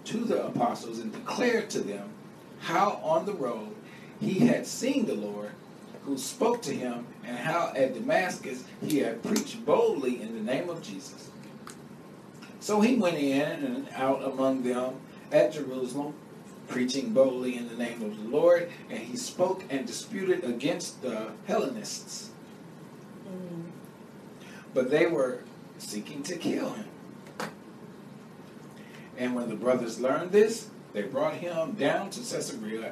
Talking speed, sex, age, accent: 140 wpm, male, 40-59, American